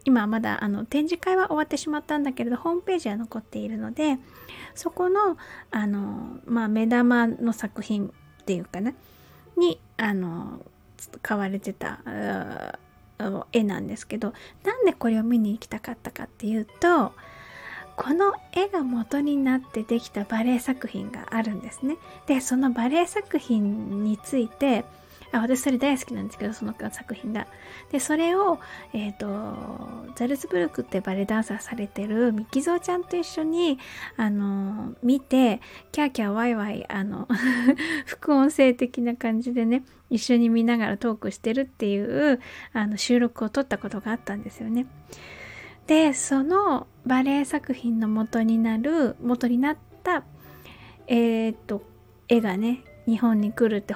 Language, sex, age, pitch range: Japanese, female, 20-39, 220-275 Hz